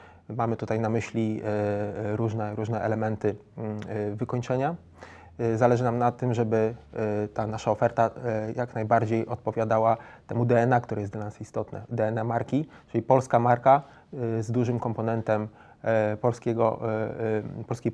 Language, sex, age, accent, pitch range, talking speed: Polish, male, 20-39, native, 110-120 Hz, 120 wpm